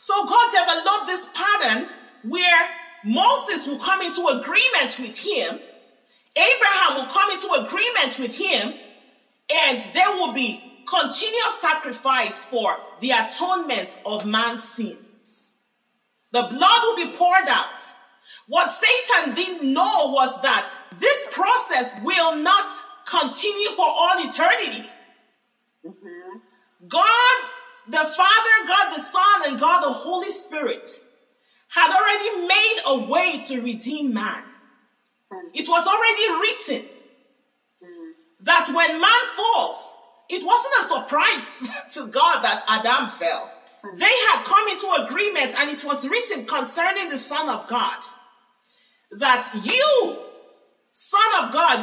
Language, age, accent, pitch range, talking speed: English, 40-59, Nigerian, 255-400 Hz, 125 wpm